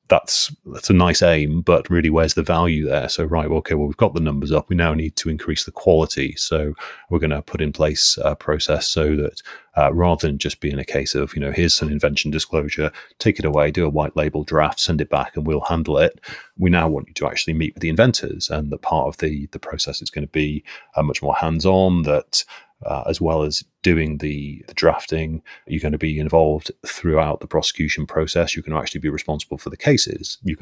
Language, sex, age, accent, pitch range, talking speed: English, male, 30-49, British, 75-85 Hz, 235 wpm